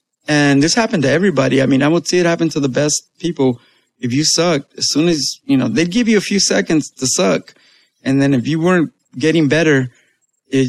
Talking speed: 225 wpm